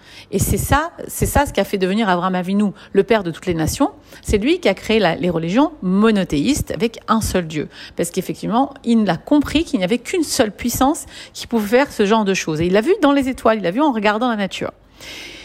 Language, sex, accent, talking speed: French, female, French, 245 wpm